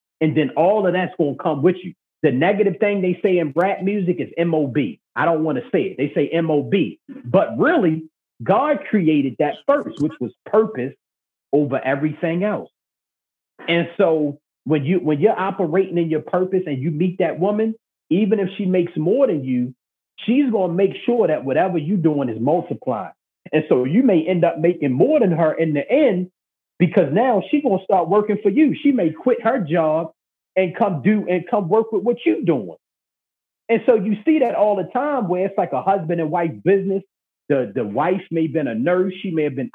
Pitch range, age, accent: 160-210 Hz, 40-59, American